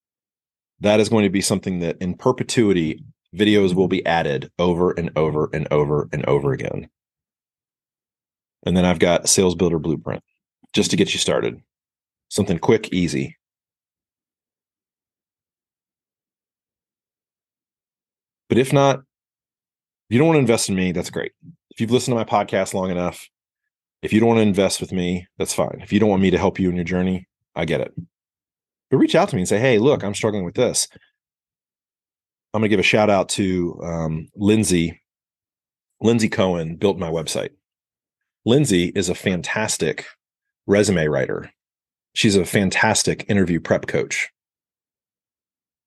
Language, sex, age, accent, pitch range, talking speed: English, male, 30-49, American, 85-110 Hz, 155 wpm